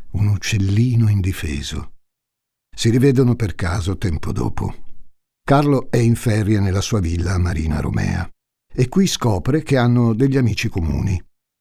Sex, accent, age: male, native, 60-79